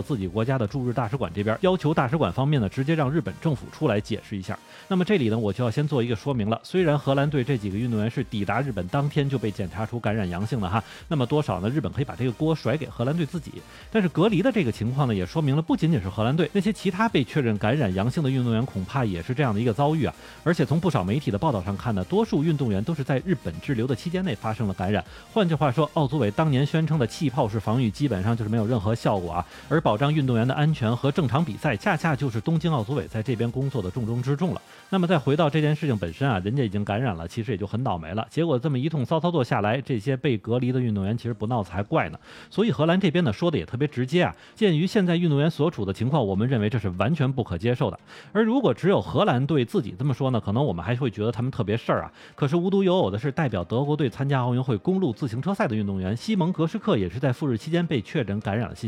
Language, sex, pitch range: Chinese, male, 110-155 Hz